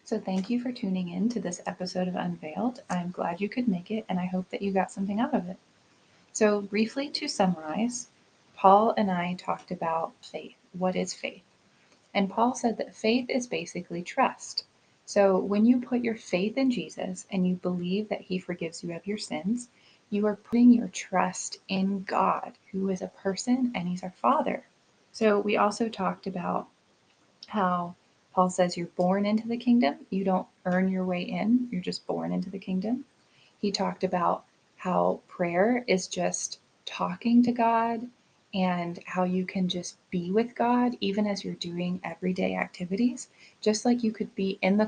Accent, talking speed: American, 185 wpm